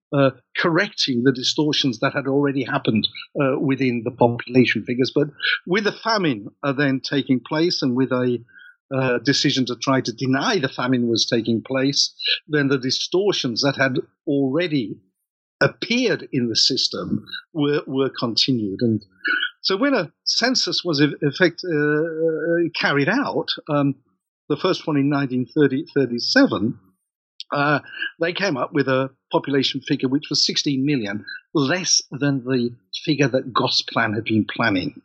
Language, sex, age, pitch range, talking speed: English, male, 50-69, 125-150 Hz, 150 wpm